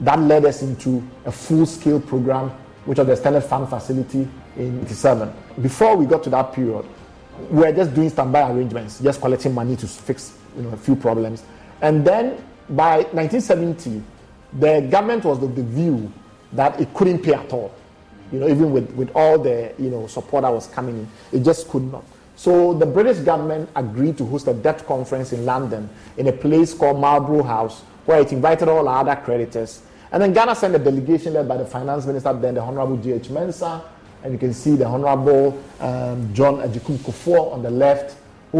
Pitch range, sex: 120-155 Hz, male